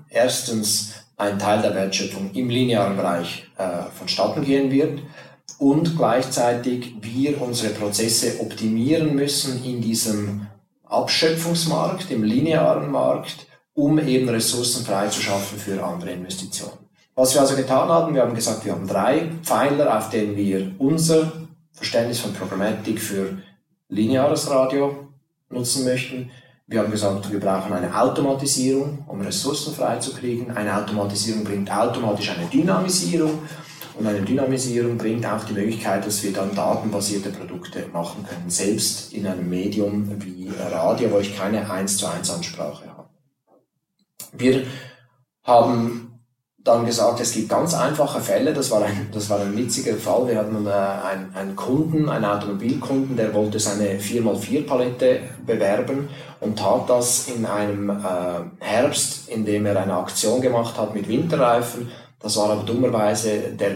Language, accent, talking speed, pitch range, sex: German, German, 140 wpm, 100-130 Hz, male